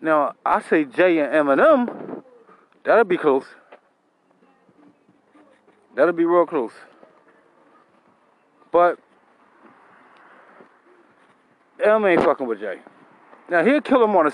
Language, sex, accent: English, male, American